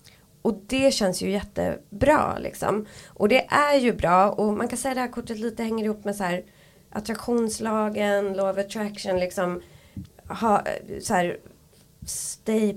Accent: native